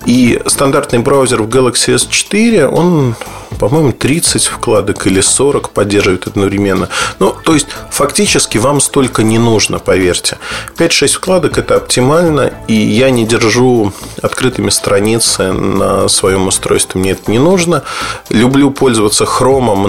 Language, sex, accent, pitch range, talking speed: Russian, male, native, 100-135 Hz, 130 wpm